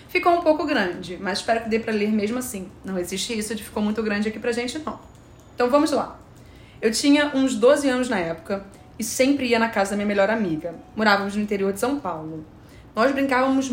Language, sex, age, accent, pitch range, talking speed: Portuguese, female, 20-39, Brazilian, 190-235 Hz, 220 wpm